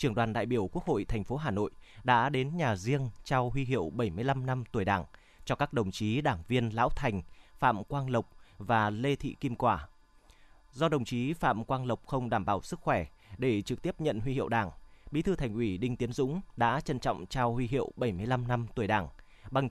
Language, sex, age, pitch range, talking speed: Vietnamese, male, 20-39, 110-140 Hz, 220 wpm